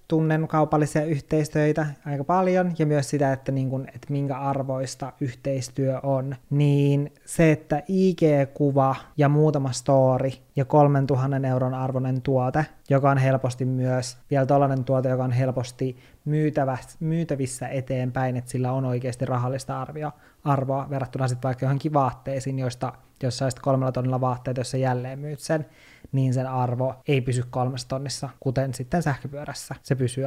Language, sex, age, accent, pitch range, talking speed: Finnish, male, 20-39, native, 130-150 Hz, 145 wpm